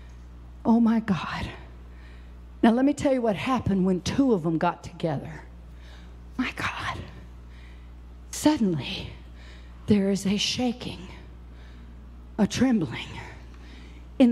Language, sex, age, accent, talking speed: English, female, 50-69, American, 110 wpm